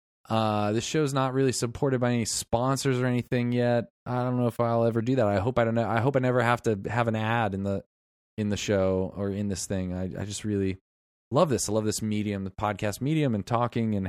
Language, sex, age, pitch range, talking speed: English, male, 20-39, 95-125 Hz, 250 wpm